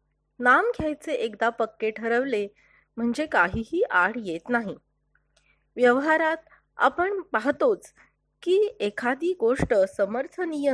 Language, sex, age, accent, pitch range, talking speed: Marathi, female, 30-49, native, 210-305 Hz, 95 wpm